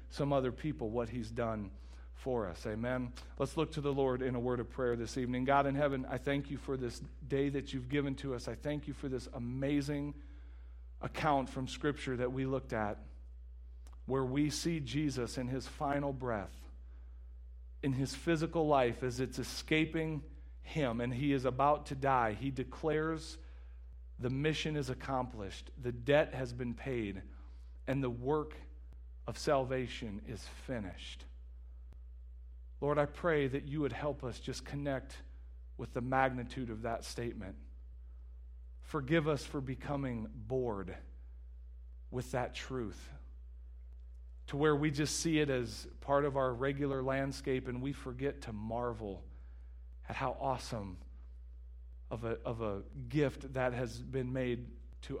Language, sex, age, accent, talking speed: English, male, 40-59, American, 155 wpm